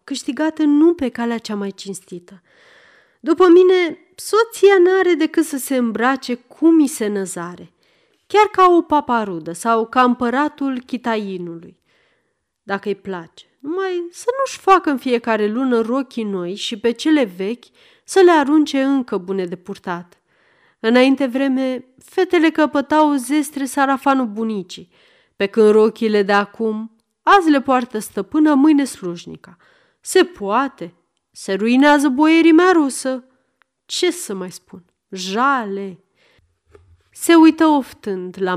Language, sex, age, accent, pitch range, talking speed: Romanian, female, 30-49, native, 200-295 Hz, 130 wpm